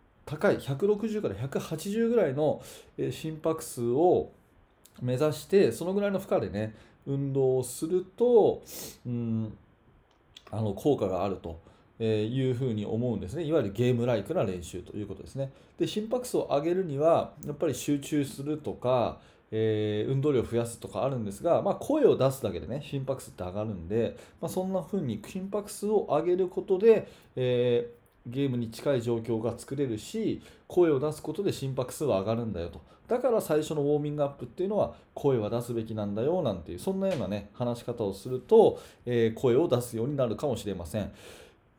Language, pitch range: Japanese, 110-155 Hz